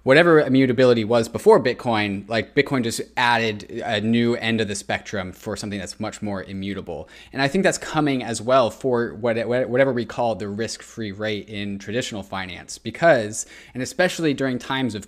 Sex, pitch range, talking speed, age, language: male, 110-140 Hz, 175 wpm, 20-39, English